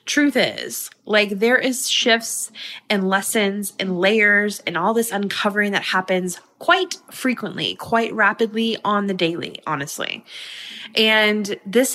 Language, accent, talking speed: English, American, 130 wpm